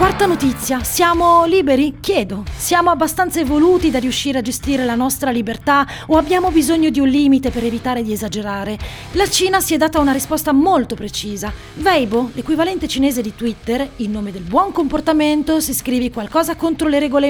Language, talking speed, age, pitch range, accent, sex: Italian, 175 wpm, 30-49, 230-315 Hz, native, female